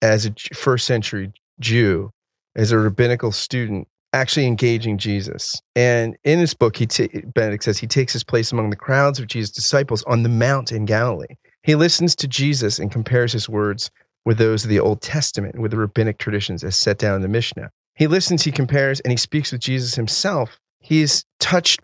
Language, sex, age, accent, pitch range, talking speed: English, male, 30-49, American, 110-135 Hz, 200 wpm